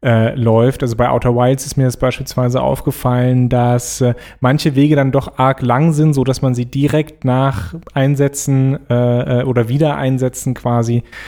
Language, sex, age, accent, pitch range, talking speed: German, male, 30-49, German, 120-145 Hz, 165 wpm